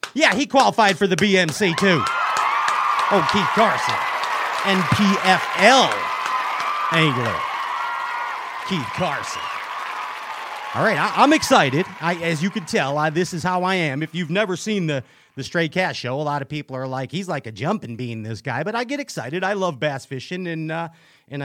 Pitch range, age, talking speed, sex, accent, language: 135-200 Hz, 40-59, 175 wpm, male, American, English